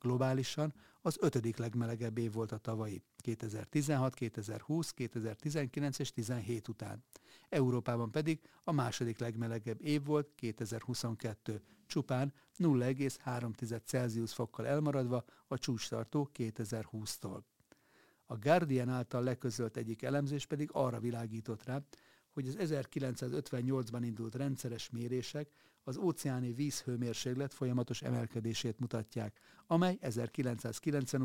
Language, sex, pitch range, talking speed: Hungarian, male, 115-140 Hz, 100 wpm